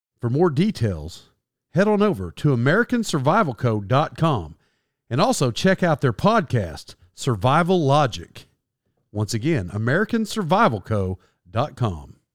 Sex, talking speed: male, 90 wpm